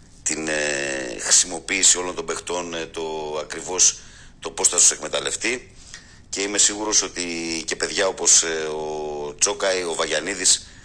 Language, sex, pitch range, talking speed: Greek, male, 80-100 Hz, 150 wpm